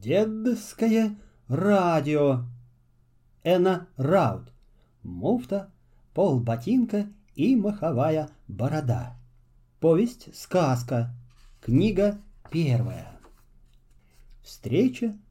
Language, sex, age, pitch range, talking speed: Russian, male, 40-59, 120-200 Hz, 55 wpm